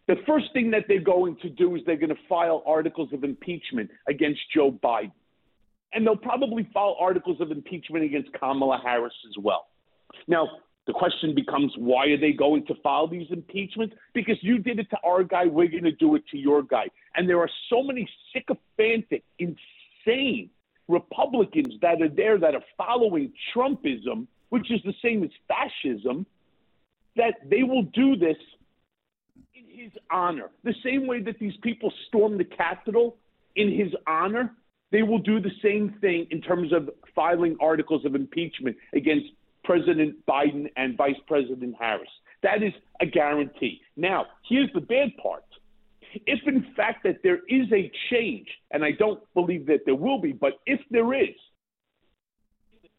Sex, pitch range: male, 160-245 Hz